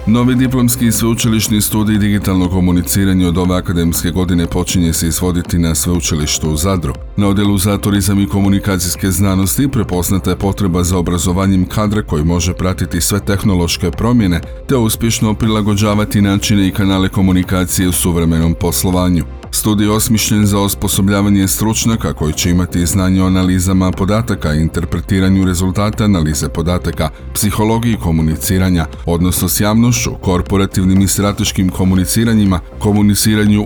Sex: male